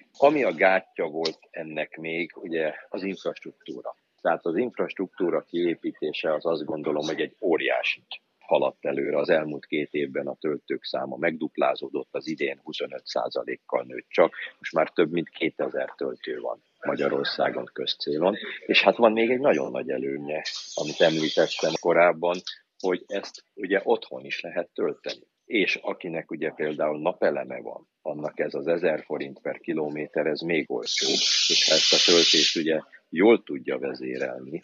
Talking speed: 150 wpm